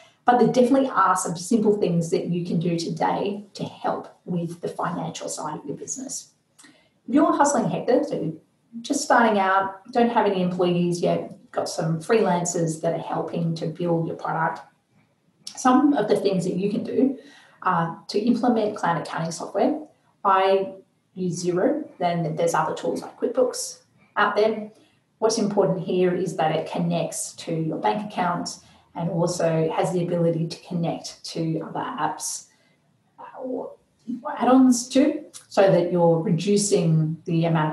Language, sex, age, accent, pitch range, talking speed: English, female, 30-49, Australian, 175-235 Hz, 155 wpm